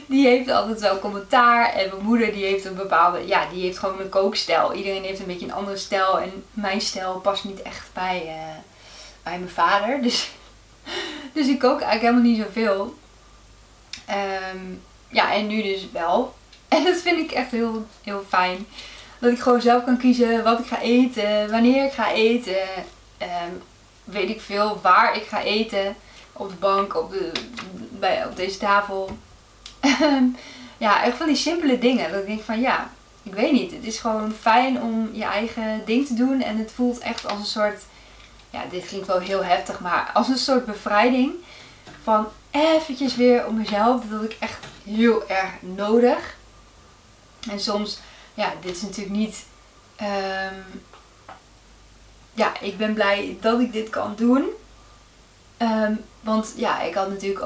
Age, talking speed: 20-39, 165 wpm